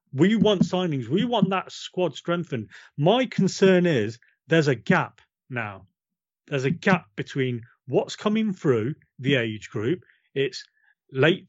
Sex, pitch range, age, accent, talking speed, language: male, 130-180 Hz, 40-59, British, 140 wpm, English